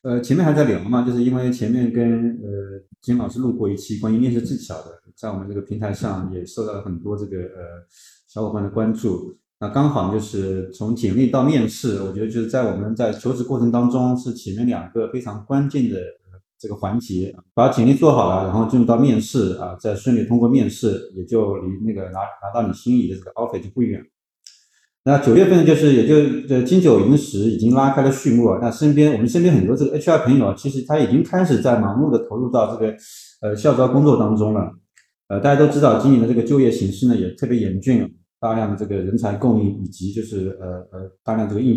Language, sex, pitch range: Chinese, male, 100-125 Hz